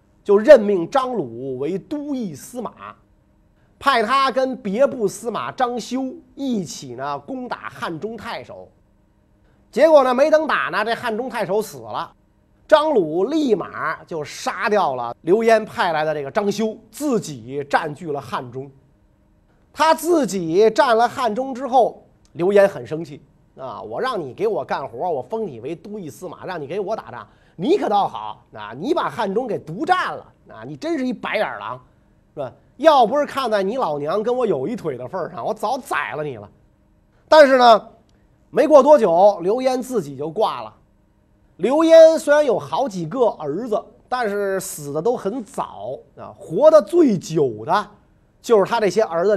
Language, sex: Chinese, male